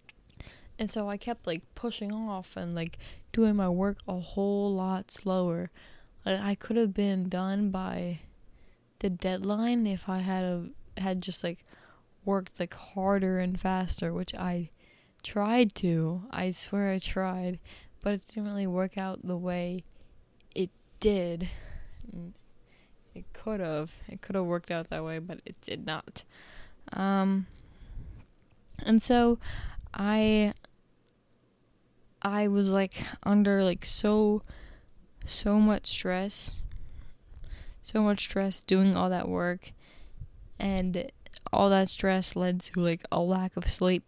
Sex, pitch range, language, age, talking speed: female, 180-205 Hz, English, 10-29, 135 wpm